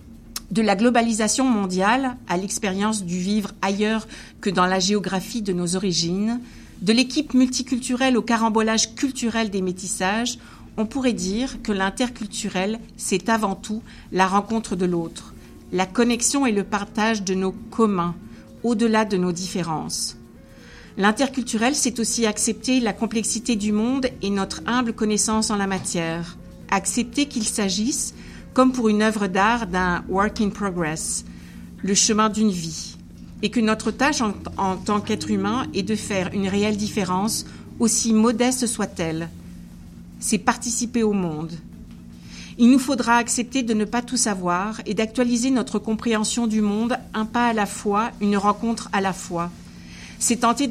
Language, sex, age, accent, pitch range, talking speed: French, female, 50-69, French, 195-235 Hz, 150 wpm